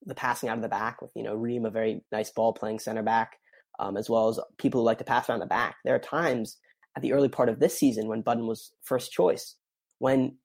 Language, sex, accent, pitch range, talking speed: English, male, American, 115-140 Hz, 260 wpm